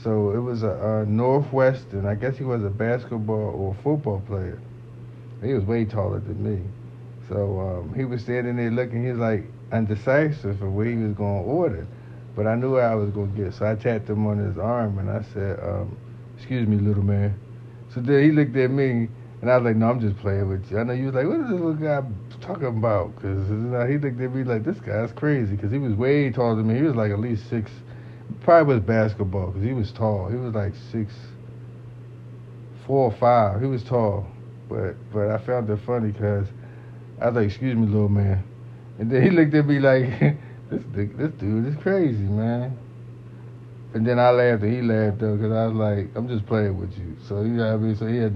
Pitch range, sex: 105-120 Hz, male